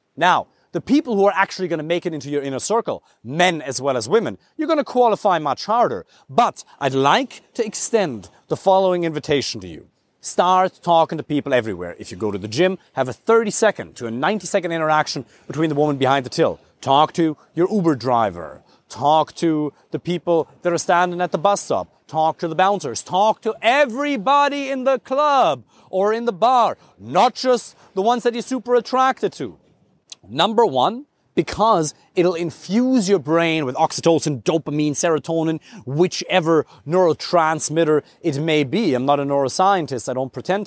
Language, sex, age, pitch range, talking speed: English, male, 30-49, 155-225 Hz, 180 wpm